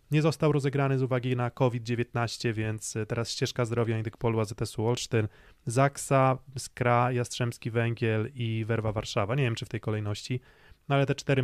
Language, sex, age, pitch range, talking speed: Polish, male, 20-39, 115-135 Hz, 170 wpm